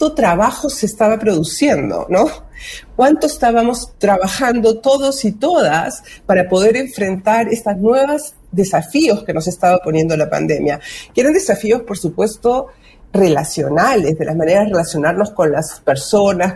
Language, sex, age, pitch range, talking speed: Spanish, female, 40-59, 170-225 Hz, 135 wpm